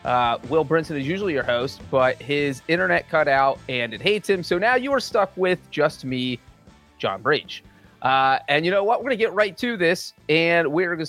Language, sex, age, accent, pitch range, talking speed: English, male, 30-49, American, 145-200 Hz, 220 wpm